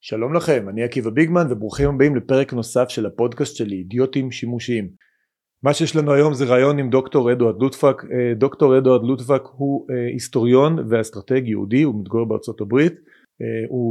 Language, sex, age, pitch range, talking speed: Hebrew, male, 30-49, 115-135 Hz, 155 wpm